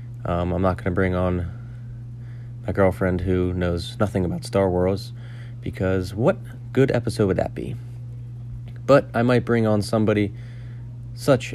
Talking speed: 150 wpm